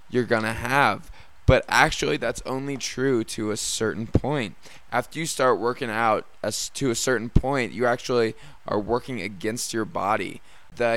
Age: 20-39